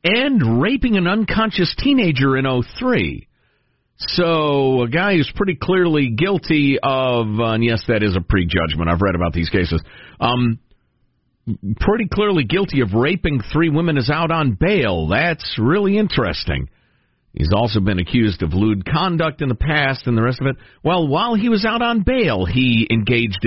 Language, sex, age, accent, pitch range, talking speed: English, male, 50-69, American, 110-165 Hz, 165 wpm